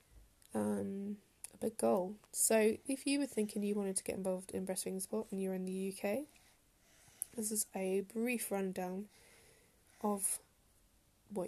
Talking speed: 150 wpm